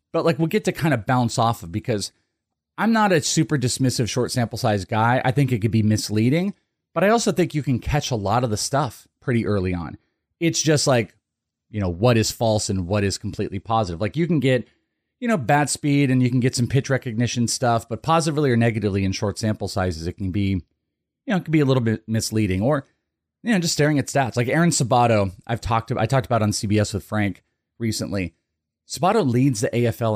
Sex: male